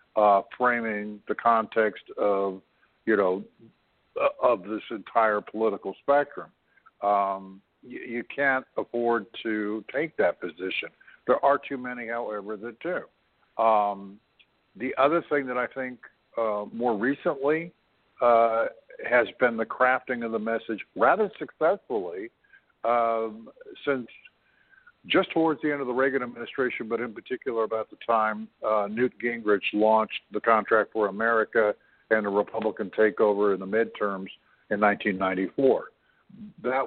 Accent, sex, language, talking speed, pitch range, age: American, male, English, 135 wpm, 105-130 Hz, 60-79